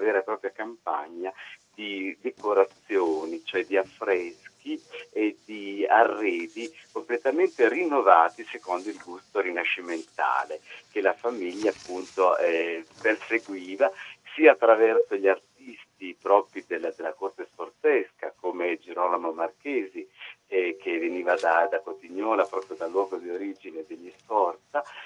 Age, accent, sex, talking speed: 50-69, native, male, 115 wpm